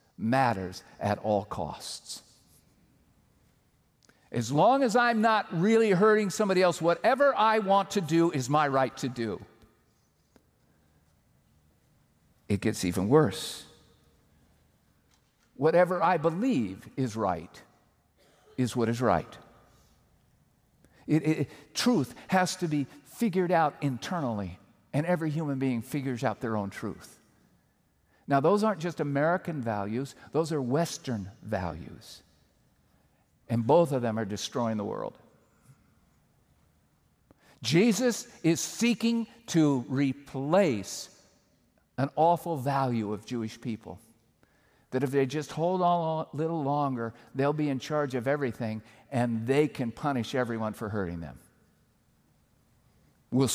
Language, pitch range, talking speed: English, 115-165 Hz, 120 wpm